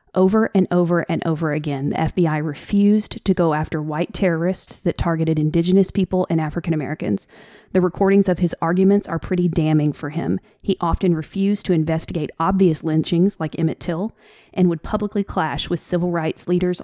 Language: English